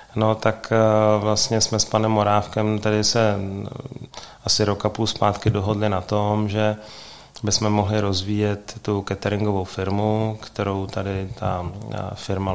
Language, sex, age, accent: Czech, male, 30-49, native